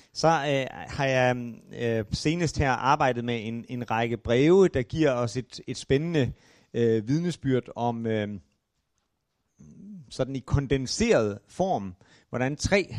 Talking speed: 135 wpm